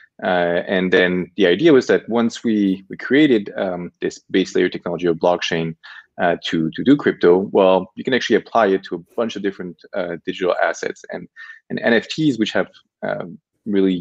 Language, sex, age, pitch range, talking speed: English, male, 20-39, 90-105 Hz, 190 wpm